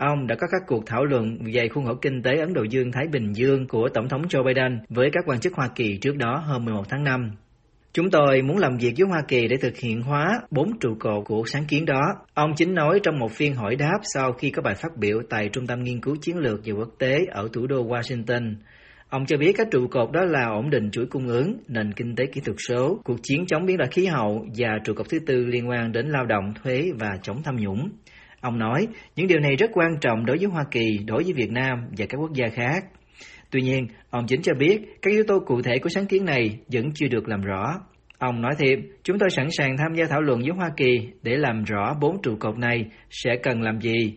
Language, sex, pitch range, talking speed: Vietnamese, male, 115-145 Hz, 255 wpm